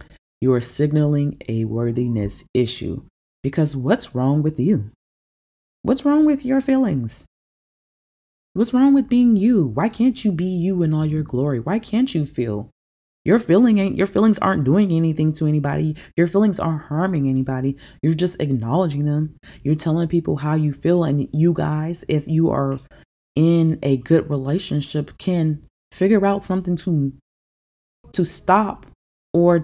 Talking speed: 150 wpm